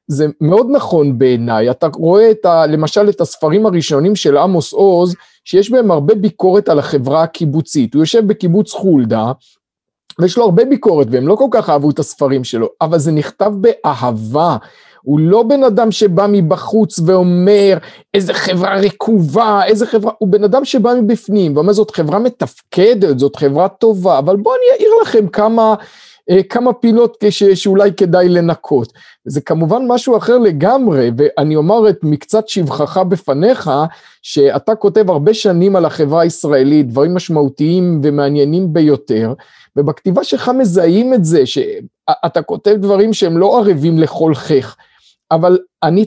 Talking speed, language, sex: 145 wpm, Hebrew, male